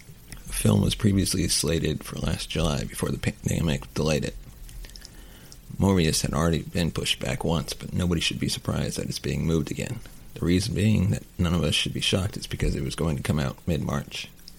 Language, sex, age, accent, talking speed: English, male, 30-49, American, 200 wpm